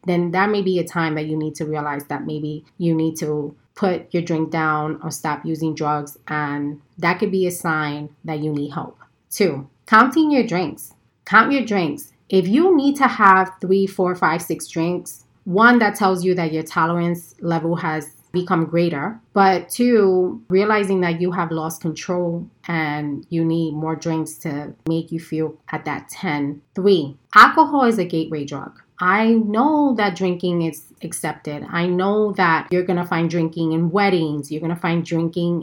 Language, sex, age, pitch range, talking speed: English, female, 30-49, 160-190 Hz, 185 wpm